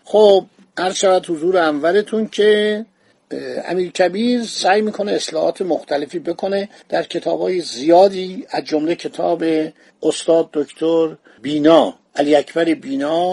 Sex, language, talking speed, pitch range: male, Persian, 110 wpm, 155-185 Hz